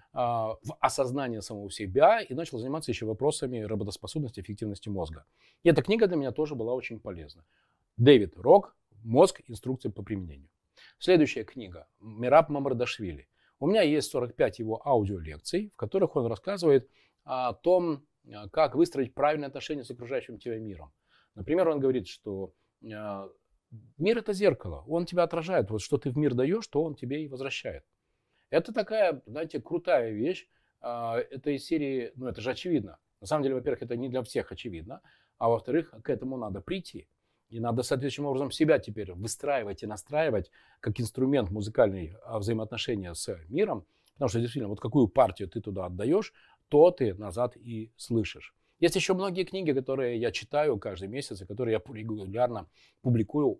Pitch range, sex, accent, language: 105-145 Hz, male, native, Russian